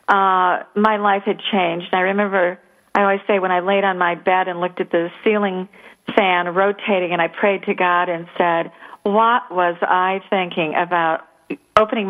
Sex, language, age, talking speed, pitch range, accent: female, English, 40-59, 180 wpm, 180-220 Hz, American